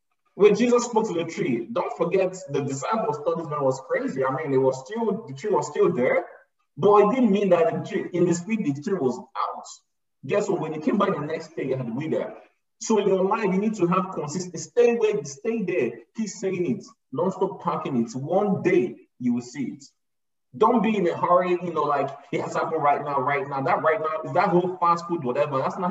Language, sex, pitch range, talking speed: English, male, 150-205 Hz, 245 wpm